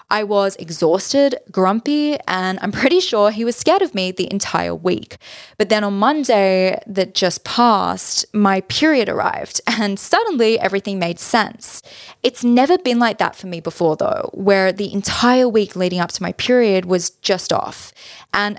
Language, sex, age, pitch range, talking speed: English, female, 20-39, 185-230 Hz, 170 wpm